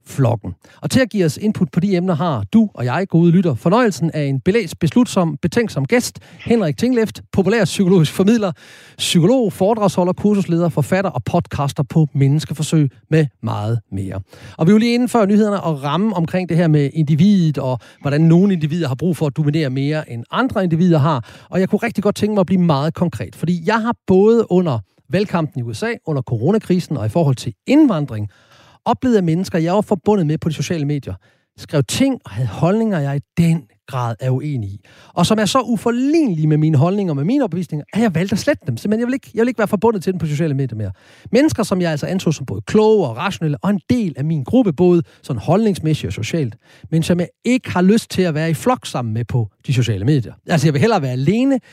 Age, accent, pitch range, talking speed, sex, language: 40-59, native, 140-205 Hz, 220 wpm, male, Danish